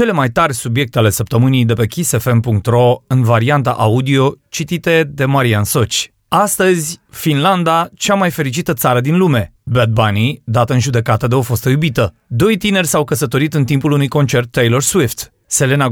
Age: 30-49